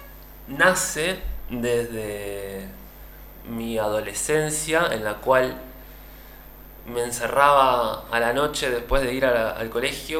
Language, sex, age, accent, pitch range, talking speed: Spanish, male, 20-39, Argentinian, 110-150 Hz, 105 wpm